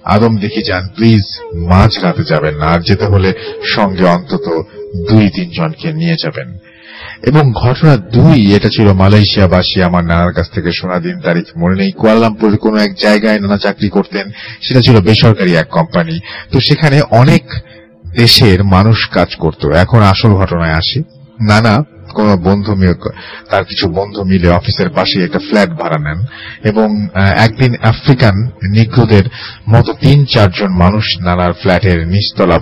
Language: Bengali